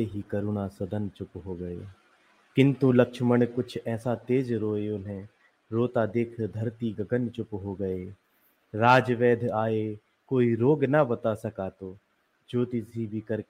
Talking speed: 130 wpm